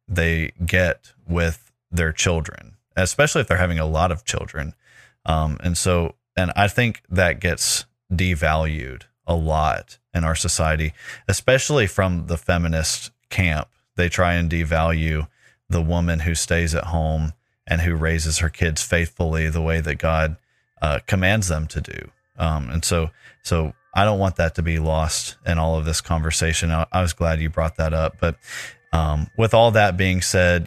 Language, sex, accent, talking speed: English, male, American, 170 wpm